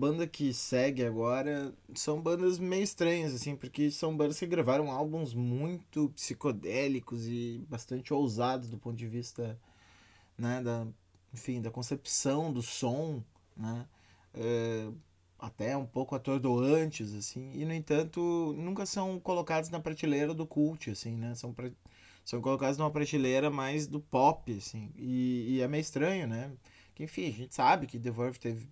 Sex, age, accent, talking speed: male, 20-39, Brazilian, 155 wpm